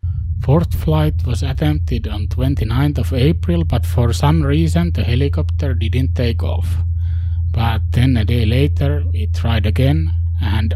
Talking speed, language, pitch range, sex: 150 wpm, English, 85-95 Hz, male